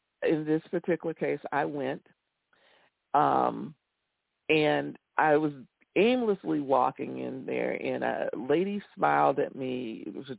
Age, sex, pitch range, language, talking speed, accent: 50-69, female, 125-180 Hz, English, 120 wpm, American